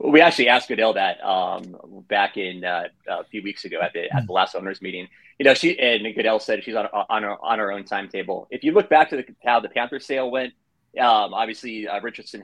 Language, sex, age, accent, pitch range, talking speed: English, male, 30-49, American, 100-120 Hz, 235 wpm